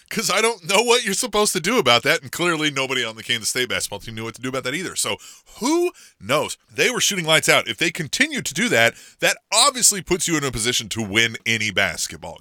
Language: English